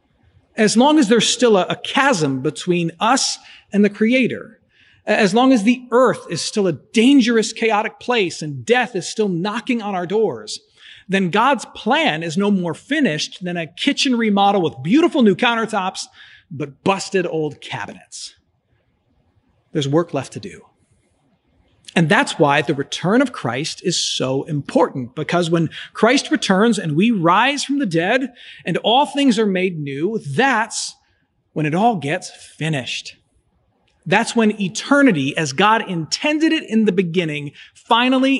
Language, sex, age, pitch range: English, male, 40-59, 155-240 Hz